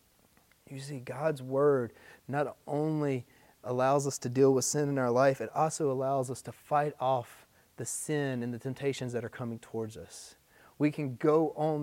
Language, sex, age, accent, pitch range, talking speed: English, male, 30-49, American, 115-145 Hz, 185 wpm